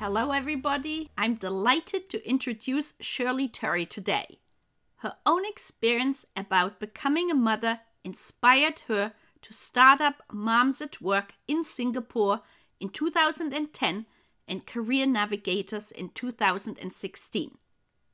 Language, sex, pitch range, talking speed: English, female, 215-295 Hz, 110 wpm